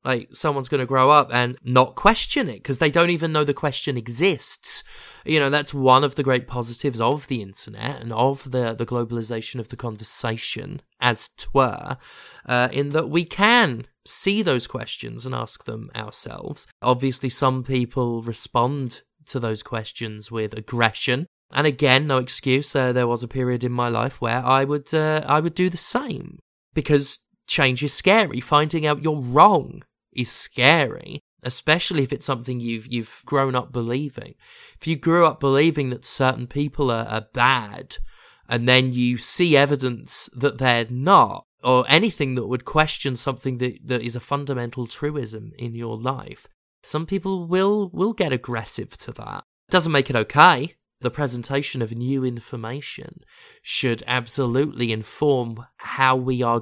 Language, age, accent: English, 20-39, British